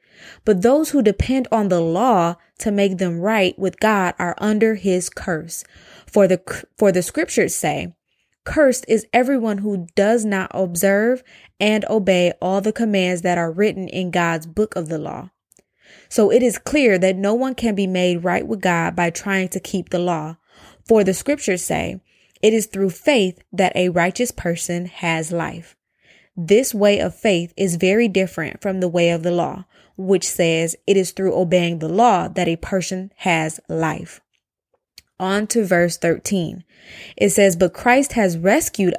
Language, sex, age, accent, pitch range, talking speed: English, female, 20-39, American, 175-220 Hz, 175 wpm